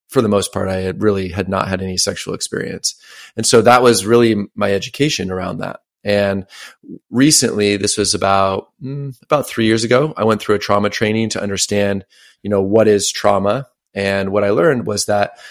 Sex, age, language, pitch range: male, 30-49, English, 95-110 Hz